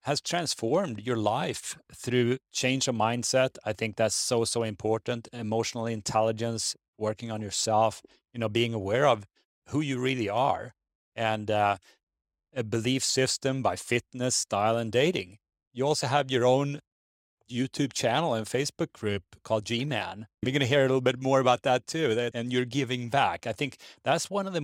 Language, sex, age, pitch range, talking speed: English, male, 30-49, 105-125 Hz, 175 wpm